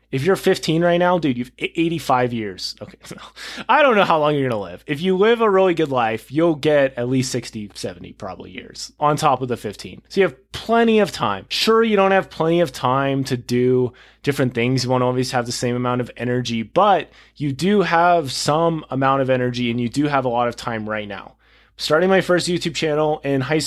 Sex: male